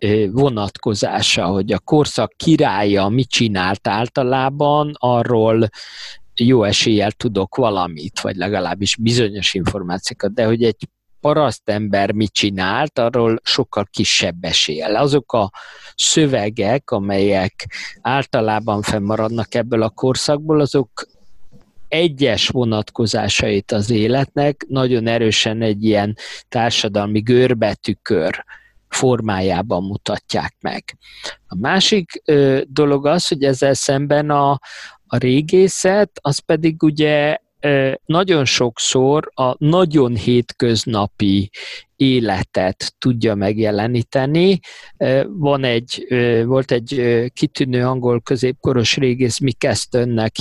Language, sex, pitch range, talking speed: Hungarian, male, 105-140 Hz, 100 wpm